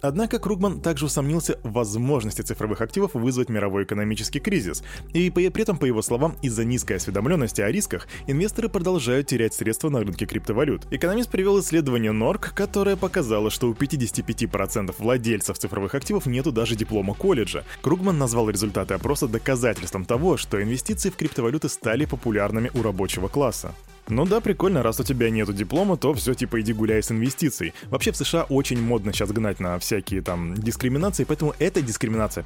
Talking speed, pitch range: 165 wpm, 110-160 Hz